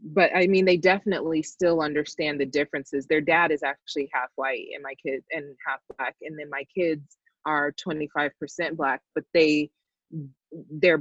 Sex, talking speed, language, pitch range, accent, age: female, 180 wpm, English, 145-175 Hz, American, 20-39